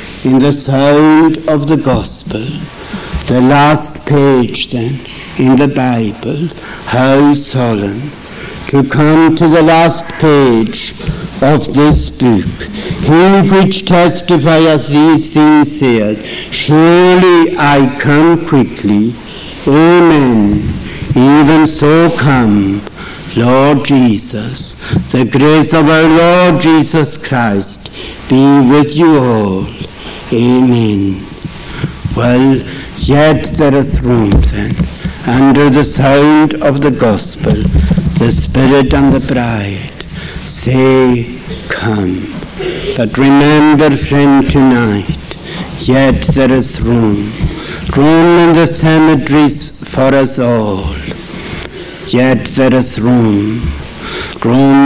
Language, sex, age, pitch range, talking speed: English, male, 60-79, 120-150 Hz, 100 wpm